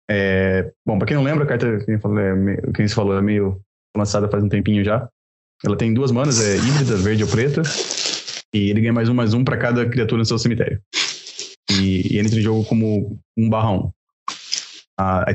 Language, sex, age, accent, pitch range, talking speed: Portuguese, male, 20-39, Brazilian, 100-120 Hz, 200 wpm